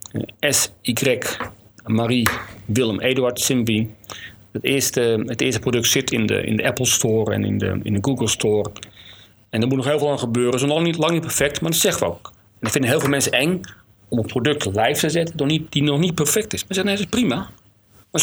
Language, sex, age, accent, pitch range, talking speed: Dutch, male, 40-59, Dutch, 110-150 Hz, 245 wpm